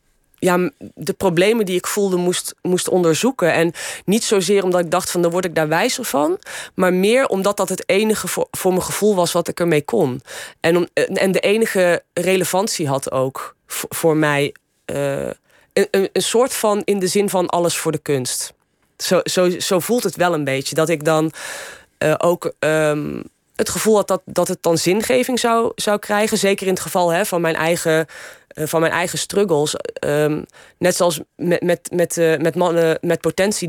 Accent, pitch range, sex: Dutch, 165-195 Hz, female